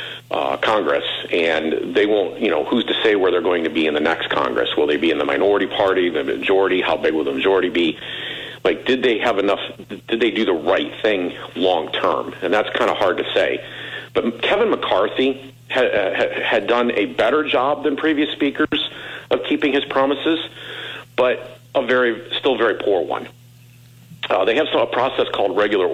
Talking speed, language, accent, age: 190 wpm, English, American, 50-69